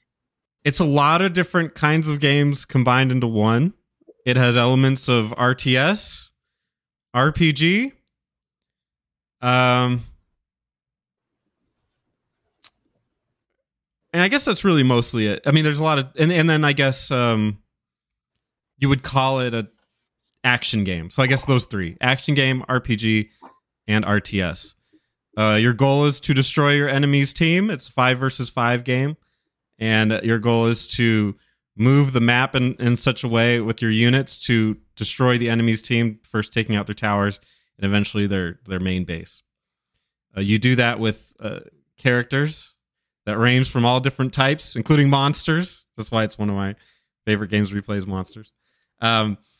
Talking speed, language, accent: 155 wpm, English, American